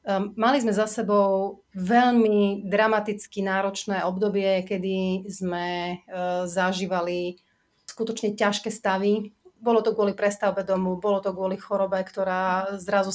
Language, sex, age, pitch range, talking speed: Slovak, female, 30-49, 185-210 Hz, 115 wpm